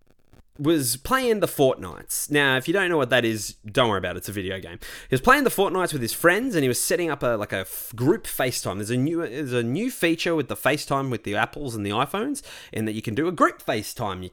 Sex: male